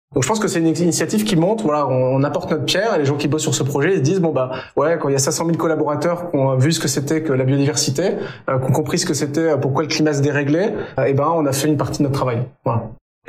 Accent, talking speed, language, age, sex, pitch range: French, 305 wpm, French, 20-39, male, 135-165 Hz